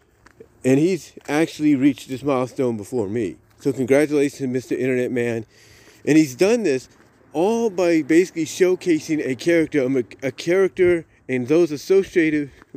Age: 40-59